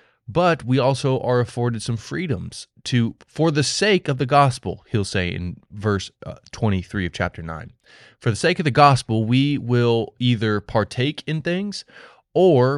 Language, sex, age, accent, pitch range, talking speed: English, male, 20-39, American, 105-135 Hz, 170 wpm